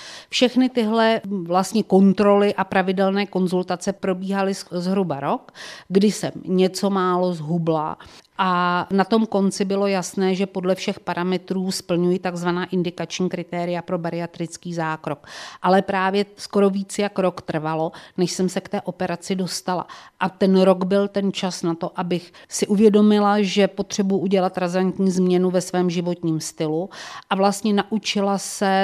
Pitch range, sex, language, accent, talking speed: 170-195 Hz, female, Czech, native, 145 wpm